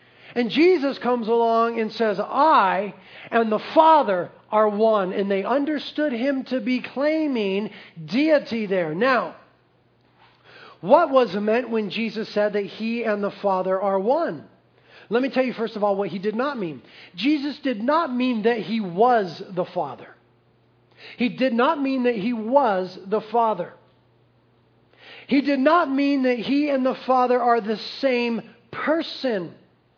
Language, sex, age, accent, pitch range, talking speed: English, male, 40-59, American, 215-280 Hz, 155 wpm